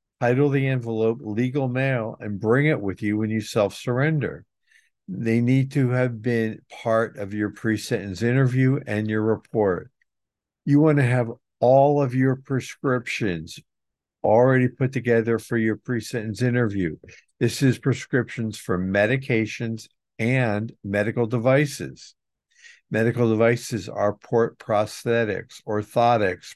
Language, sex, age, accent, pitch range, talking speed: English, male, 60-79, American, 105-130 Hz, 130 wpm